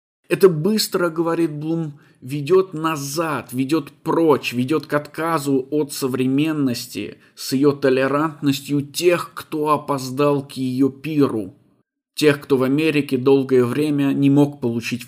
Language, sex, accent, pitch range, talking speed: Russian, male, native, 130-160 Hz, 125 wpm